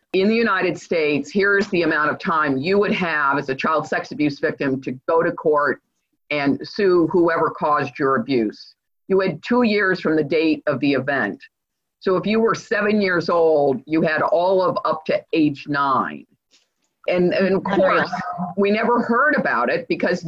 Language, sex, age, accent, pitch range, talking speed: English, female, 50-69, American, 155-210 Hz, 185 wpm